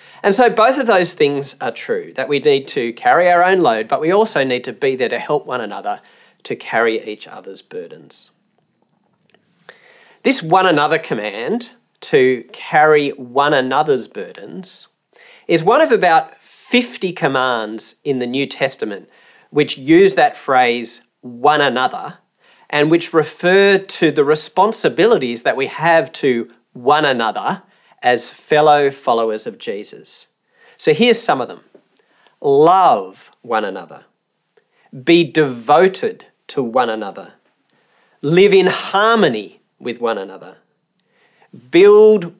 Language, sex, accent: English, male, Australian